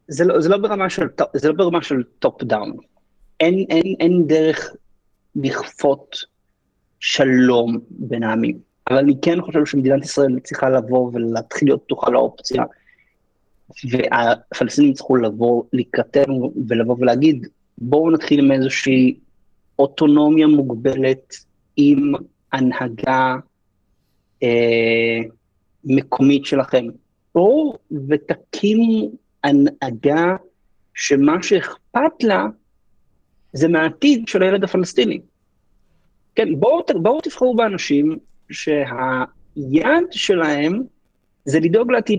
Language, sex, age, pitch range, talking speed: Hebrew, male, 30-49, 130-190 Hz, 95 wpm